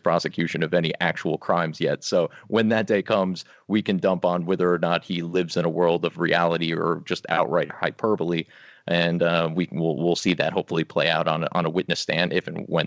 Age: 30-49